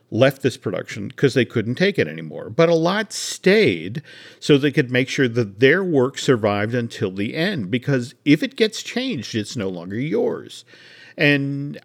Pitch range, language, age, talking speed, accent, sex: 115-150 Hz, English, 50-69, 175 wpm, American, male